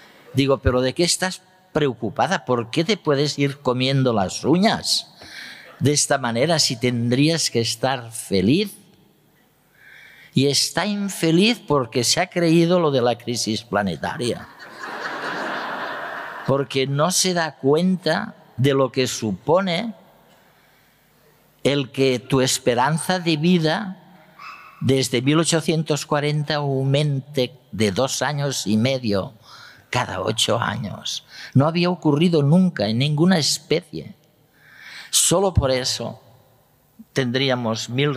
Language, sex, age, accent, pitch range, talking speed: Spanish, male, 50-69, Spanish, 125-160 Hz, 115 wpm